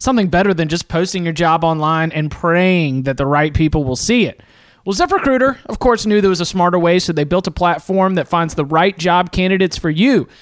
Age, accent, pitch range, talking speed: 30-49, American, 170-225 Hz, 230 wpm